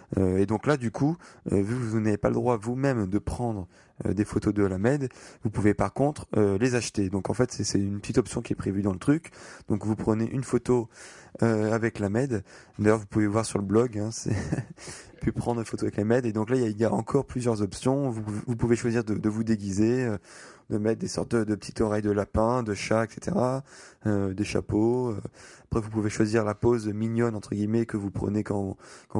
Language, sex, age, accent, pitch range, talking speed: French, male, 20-39, French, 105-120 Hz, 245 wpm